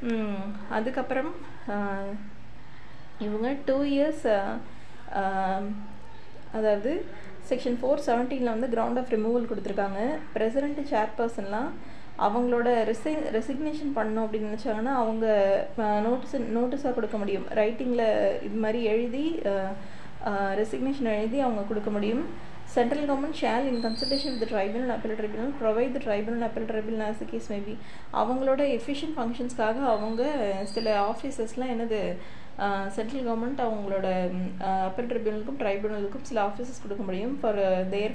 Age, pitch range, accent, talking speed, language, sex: 20-39, 205-250 Hz, native, 110 wpm, Tamil, female